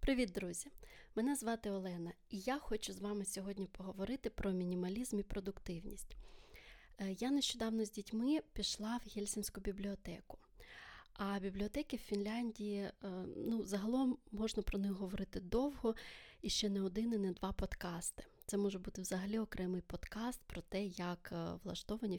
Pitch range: 190-215 Hz